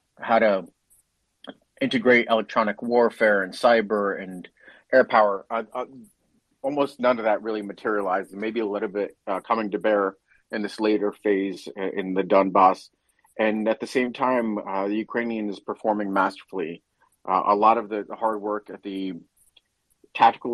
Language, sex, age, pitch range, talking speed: English, male, 40-59, 100-115 Hz, 155 wpm